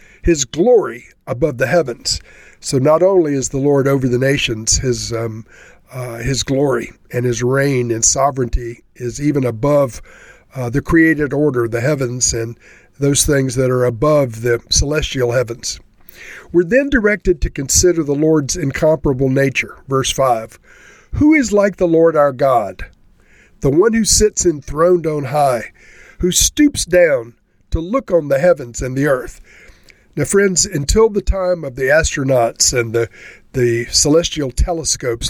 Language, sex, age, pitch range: English, male, 50-69, 125-165 Hz